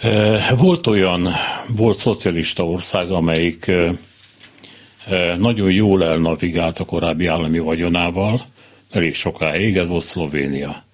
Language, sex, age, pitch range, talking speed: Hungarian, male, 60-79, 85-105 Hz, 100 wpm